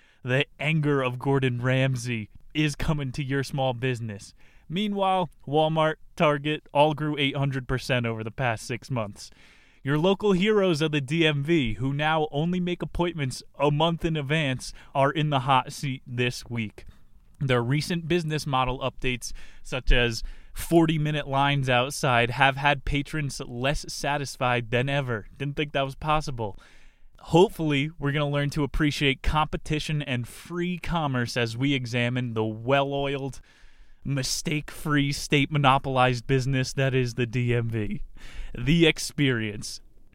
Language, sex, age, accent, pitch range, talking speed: English, male, 20-39, American, 130-155 Hz, 135 wpm